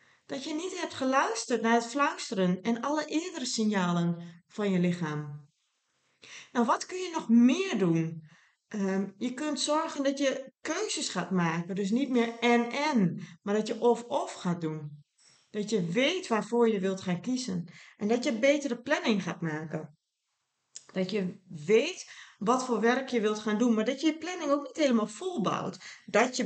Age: 40-59